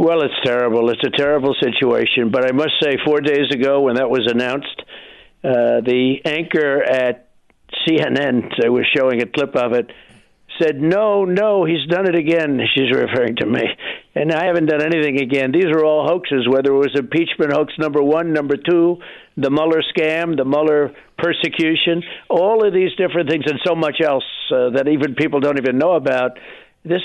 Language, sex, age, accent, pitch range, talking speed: English, male, 60-79, American, 140-170 Hz, 185 wpm